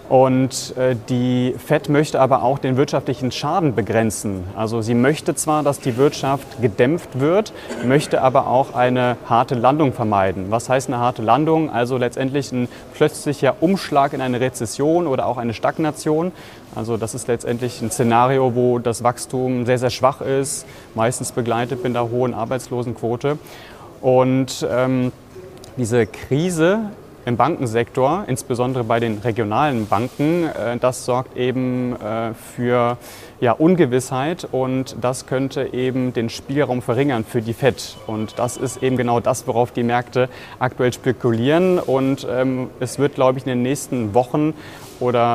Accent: German